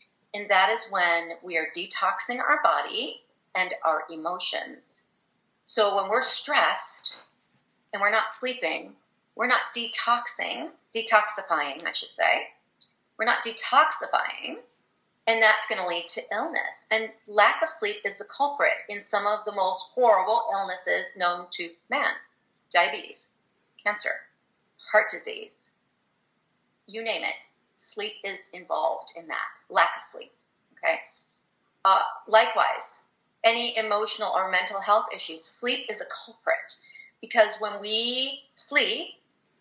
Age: 40-59